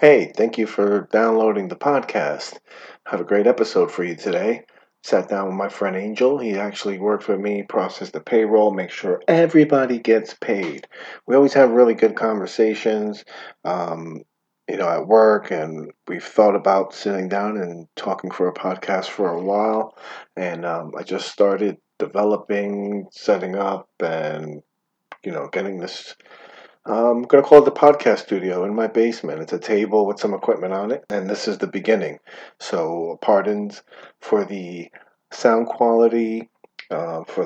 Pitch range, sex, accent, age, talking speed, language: 95-110 Hz, male, American, 40-59, 165 wpm, English